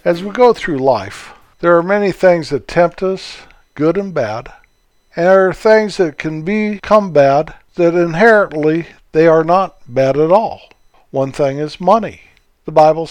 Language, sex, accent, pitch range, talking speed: English, male, American, 140-175 Hz, 170 wpm